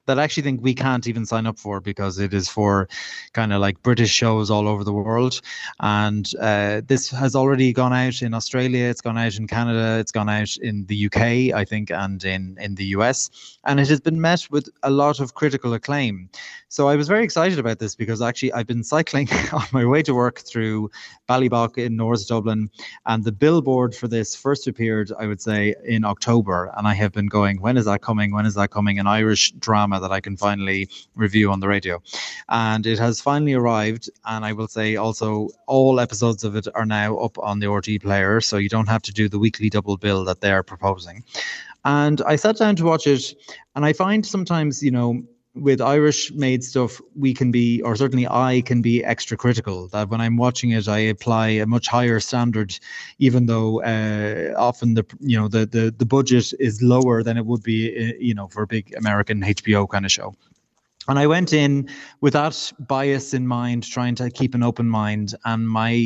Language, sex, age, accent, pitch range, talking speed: English, male, 20-39, Irish, 105-130 Hz, 215 wpm